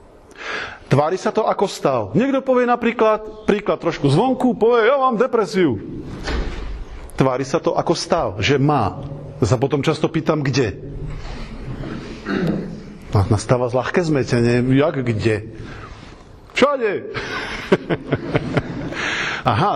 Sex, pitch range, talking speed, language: male, 125-185 Hz, 105 wpm, Slovak